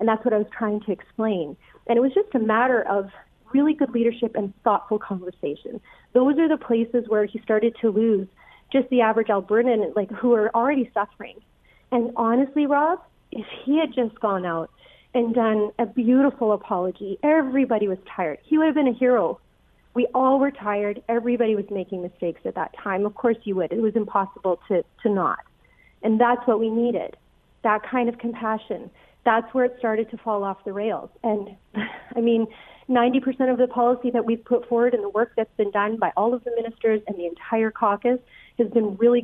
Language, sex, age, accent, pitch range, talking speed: English, female, 40-59, American, 205-245 Hz, 200 wpm